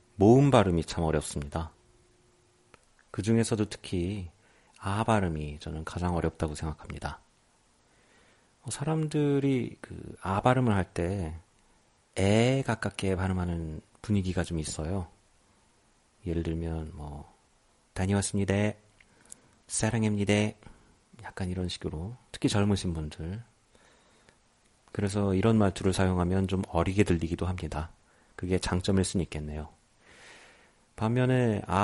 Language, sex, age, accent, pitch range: Korean, male, 40-59, native, 85-105 Hz